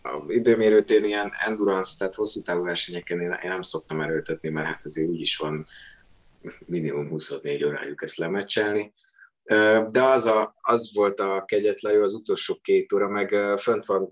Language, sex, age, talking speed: Hungarian, male, 20-39, 155 wpm